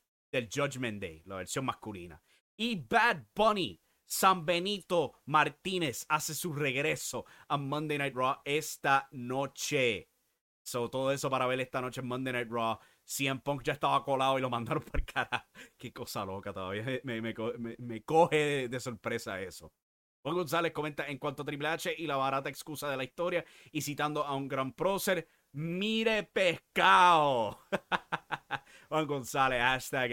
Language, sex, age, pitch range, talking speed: English, male, 30-49, 125-170 Hz, 160 wpm